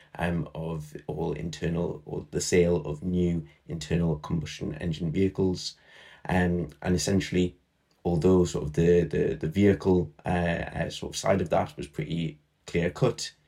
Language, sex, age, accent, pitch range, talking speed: English, male, 20-39, British, 80-95 Hz, 150 wpm